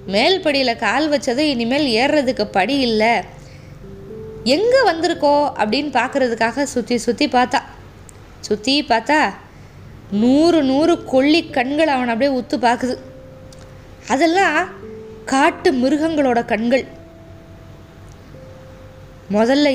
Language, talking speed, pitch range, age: Tamil, 90 wpm, 240-335 Hz, 20-39